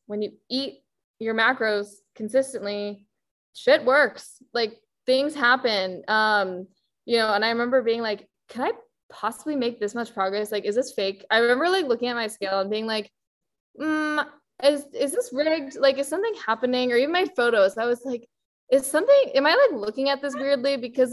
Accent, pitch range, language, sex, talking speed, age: American, 205-270 Hz, English, female, 185 wpm, 10-29